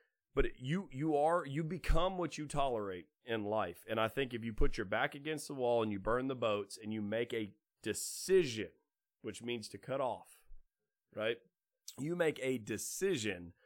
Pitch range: 105-140 Hz